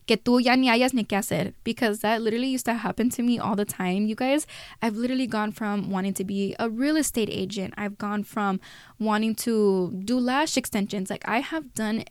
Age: 10-29